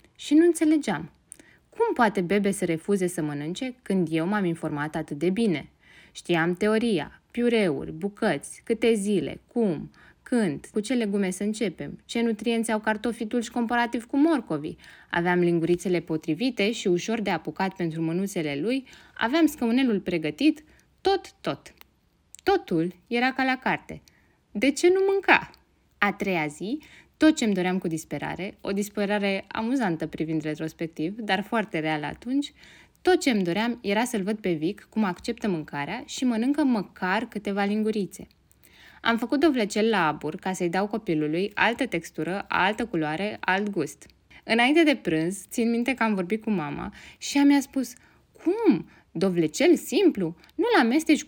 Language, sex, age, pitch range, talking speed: Romanian, female, 20-39, 175-255 Hz, 155 wpm